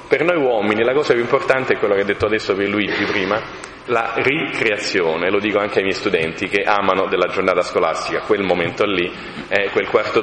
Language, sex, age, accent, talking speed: Italian, male, 40-59, native, 205 wpm